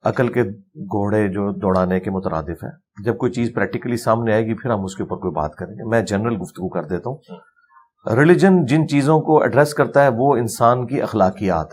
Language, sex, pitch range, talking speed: Urdu, male, 105-155 Hz, 210 wpm